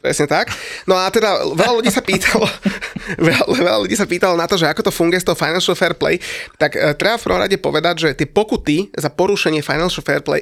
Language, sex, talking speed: Slovak, male, 215 wpm